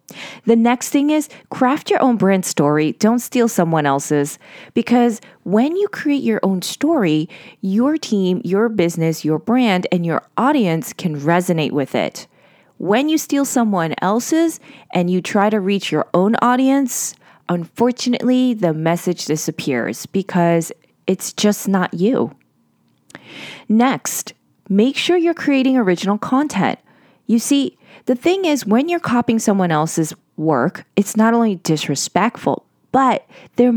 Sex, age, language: female, 30-49, English